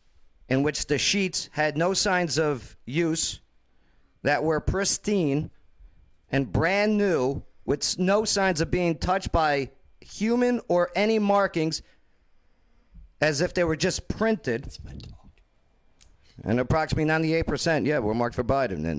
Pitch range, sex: 95-145 Hz, male